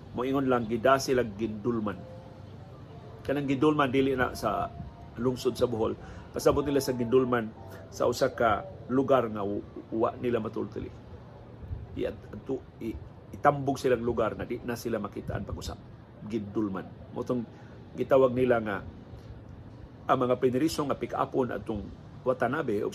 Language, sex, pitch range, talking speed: Filipino, male, 110-135 Hz, 145 wpm